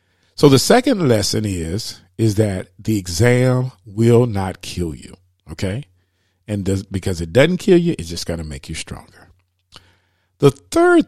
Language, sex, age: English, male, 50-69